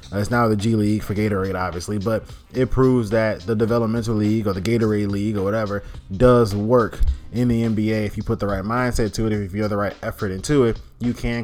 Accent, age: American, 20-39